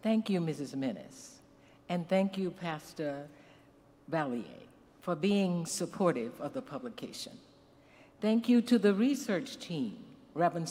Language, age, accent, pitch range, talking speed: English, 60-79, American, 175-245 Hz, 125 wpm